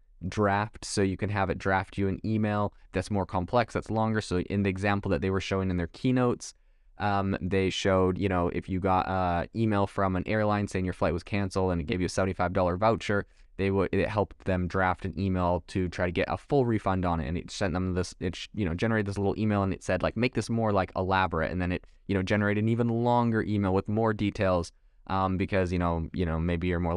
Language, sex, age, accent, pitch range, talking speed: English, male, 20-39, American, 90-105 Hz, 245 wpm